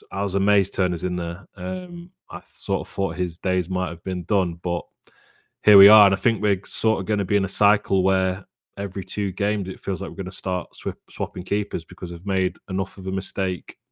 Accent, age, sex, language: British, 20-39, male, English